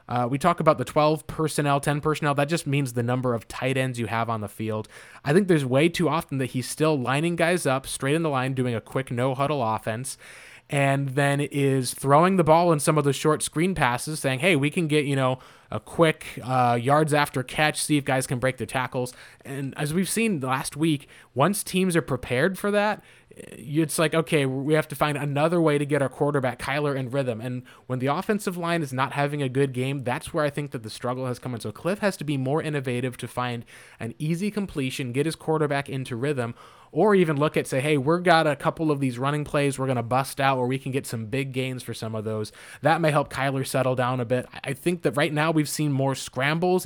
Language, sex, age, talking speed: English, male, 20-39, 240 wpm